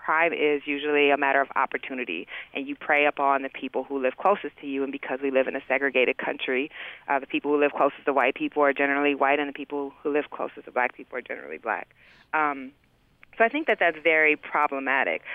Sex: female